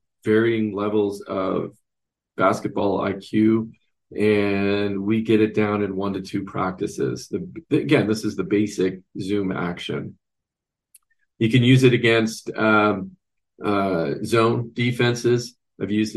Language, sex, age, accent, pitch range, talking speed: English, male, 40-59, American, 100-120 Hz, 125 wpm